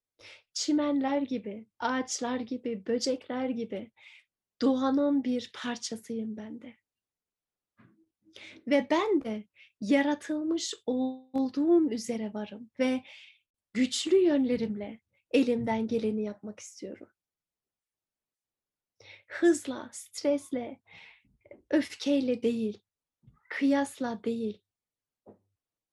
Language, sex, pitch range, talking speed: Turkish, female, 230-280 Hz, 70 wpm